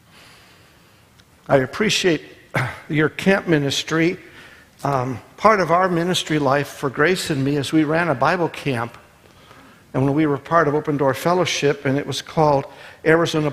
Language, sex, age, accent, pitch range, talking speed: English, male, 60-79, American, 135-155 Hz, 155 wpm